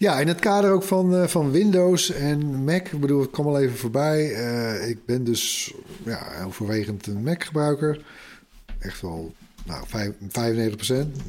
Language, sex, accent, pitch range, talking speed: Dutch, male, Dutch, 105-140 Hz, 165 wpm